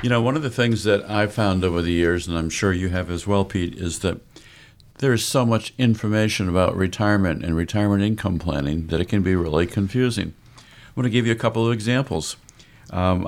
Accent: American